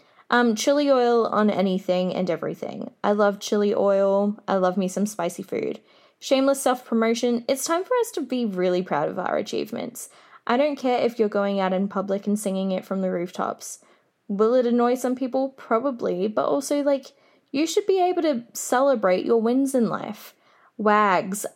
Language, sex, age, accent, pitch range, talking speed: English, female, 10-29, Australian, 190-240 Hz, 180 wpm